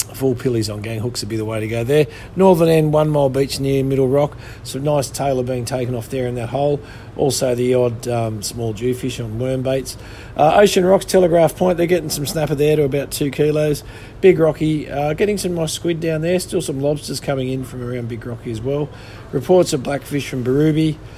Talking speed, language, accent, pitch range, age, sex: 220 wpm, English, Australian, 115-140 Hz, 40-59, male